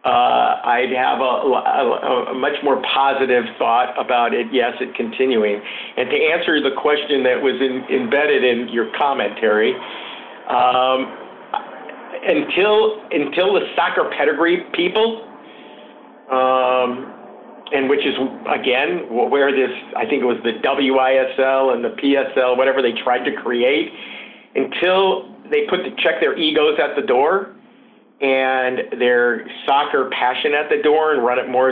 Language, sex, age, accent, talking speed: English, male, 50-69, American, 145 wpm